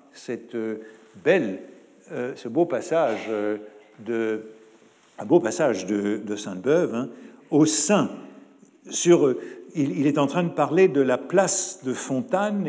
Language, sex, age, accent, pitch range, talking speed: French, male, 60-79, French, 115-160 Hz, 130 wpm